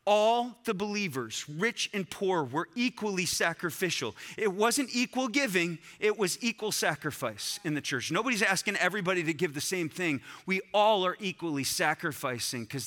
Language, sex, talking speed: English, male, 160 wpm